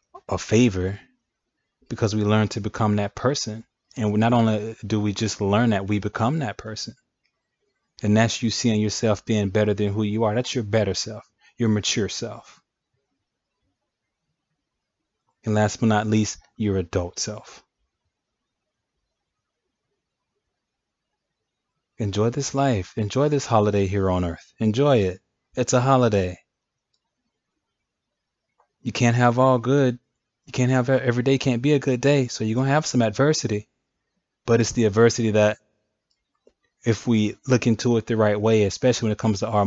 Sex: male